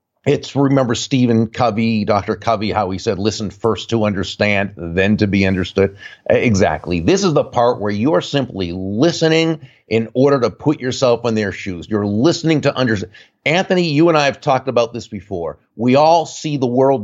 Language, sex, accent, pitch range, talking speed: English, male, American, 110-150 Hz, 185 wpm